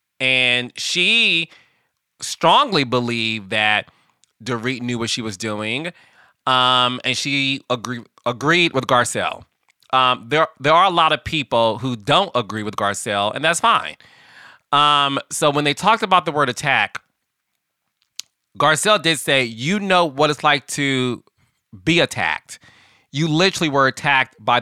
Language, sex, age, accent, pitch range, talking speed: English, male, 30-49, American, 110-150 Hz, 145 wpm